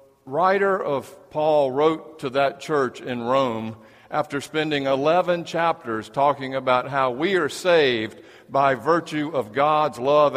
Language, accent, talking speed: English, American, 140 wpm